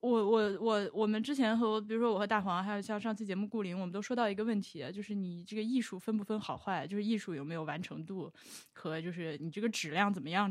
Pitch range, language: 165-215 Hz, Chinese